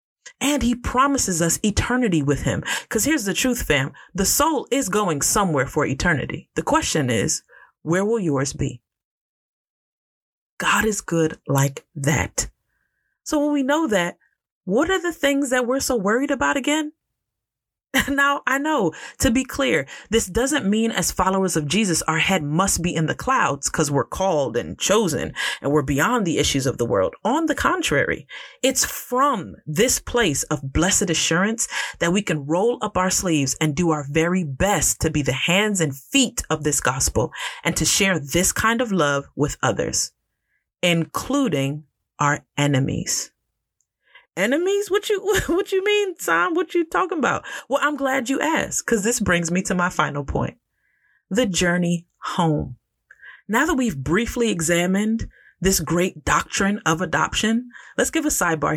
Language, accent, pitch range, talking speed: English, American, 160-260 Hz, 165 wpm